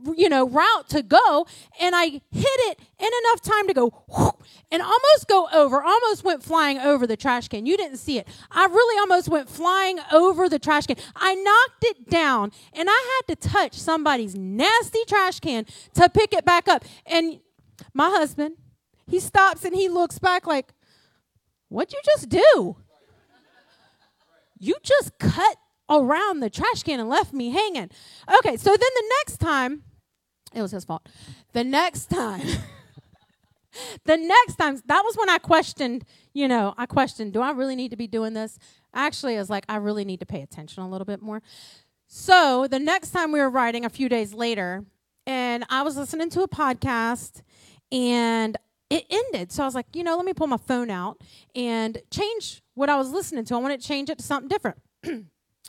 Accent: American